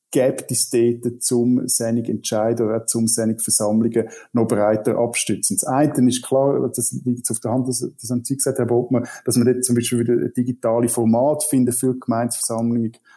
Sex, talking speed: male, 175 wpm